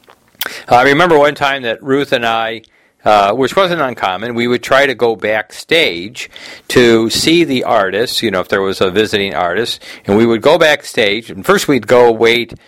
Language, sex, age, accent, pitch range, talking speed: English, male, 50-69, American, 105-135 Hz, 190 wpm